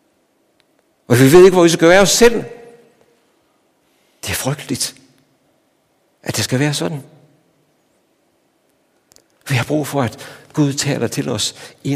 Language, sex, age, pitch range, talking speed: Danish, male, 60-79, 110-150 Hz, 140 wpm